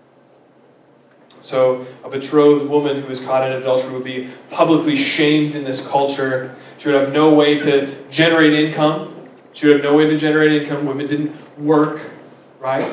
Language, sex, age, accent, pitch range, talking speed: English, male, 30-49, American, 140-160 Hz, 165 wpm